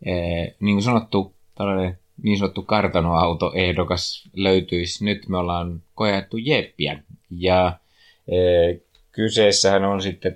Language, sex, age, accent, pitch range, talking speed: Finnish, male, 30-49, native, 80-95 Hz, 110 wpm